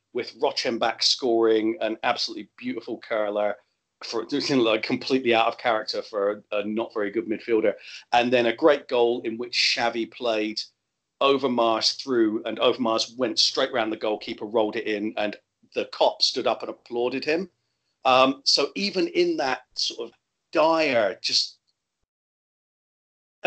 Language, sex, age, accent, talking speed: English, male, 40-59, British, 145 wpm